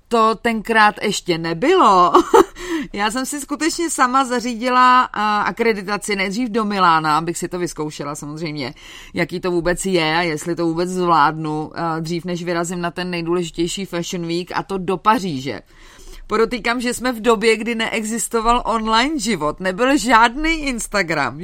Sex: female